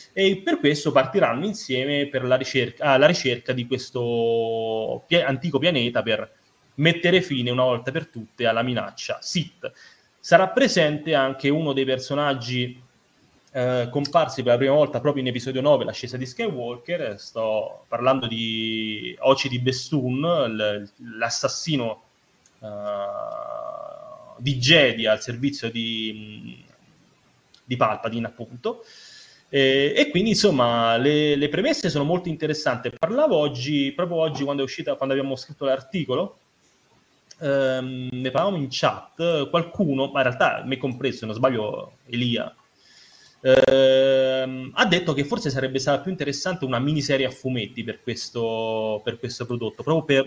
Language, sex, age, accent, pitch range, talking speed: Italian, male, 30-49, native, 125-150 Hz, 135 wpm